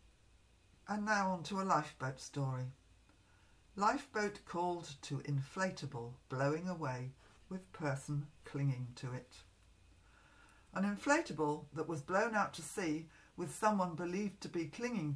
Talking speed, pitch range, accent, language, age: 125 wpm, 140-180 Hz, British, English, 50-69